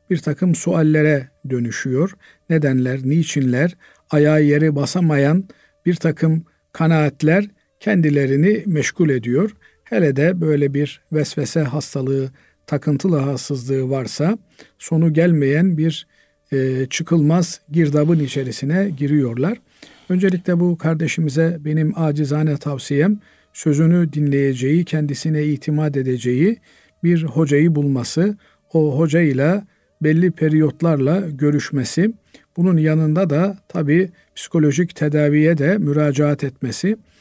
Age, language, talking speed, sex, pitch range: 50-69, Turkish, 95 wpm, male, 145-170 Hz